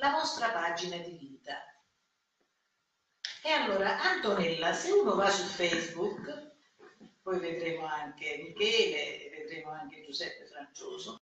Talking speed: 110 wpm